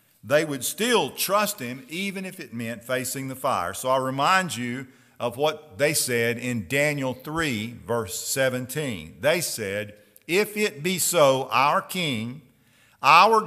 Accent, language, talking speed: American, English, 150 wpm